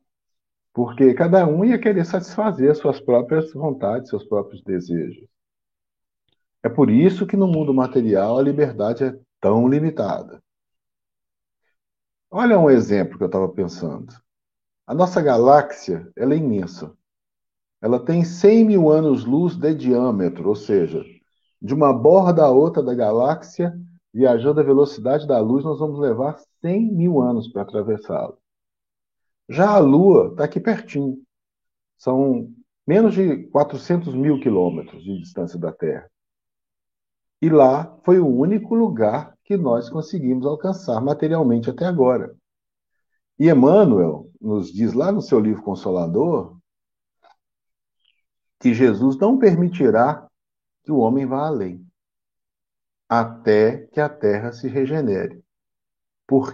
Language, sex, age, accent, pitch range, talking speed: Portuguese, male, 50-69, Brazilian, 115-175 Hz, 125 wpm